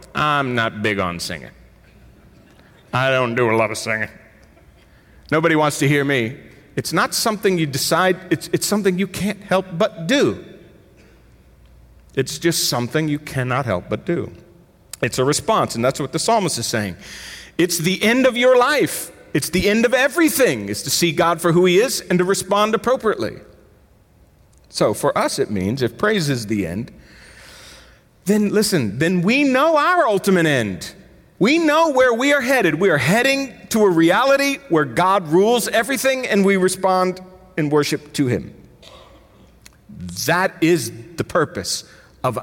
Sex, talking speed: male, 165 wpm